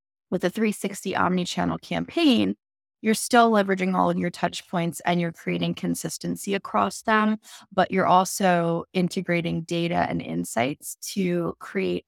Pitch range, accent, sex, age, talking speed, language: 160-190 Hz, American, female, 20-39, 140 wpm, English